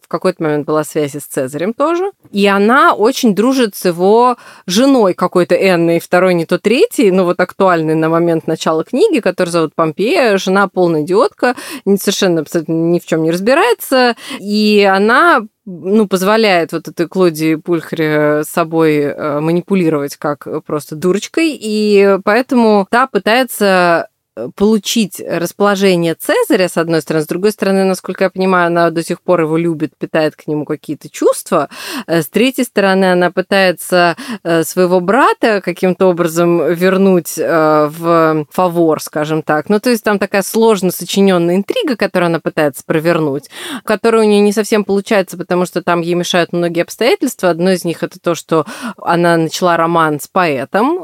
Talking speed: 155 wpm